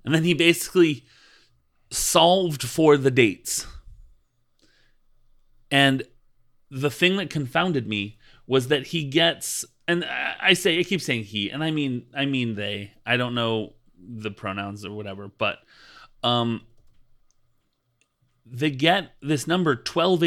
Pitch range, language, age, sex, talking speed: 120-145 Hz, English, 30-49, male, 135 wpm